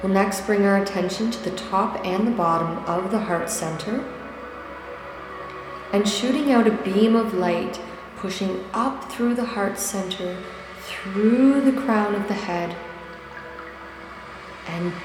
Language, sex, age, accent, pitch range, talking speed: English, female, 30-49, American, 175-205 Hz, 140 wpm